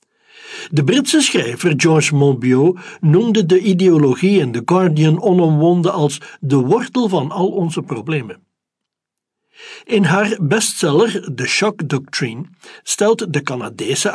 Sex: male